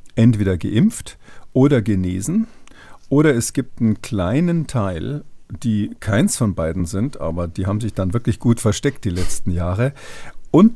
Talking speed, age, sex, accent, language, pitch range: 150 wpm, 50-69, male, German, German, 100-125 Hz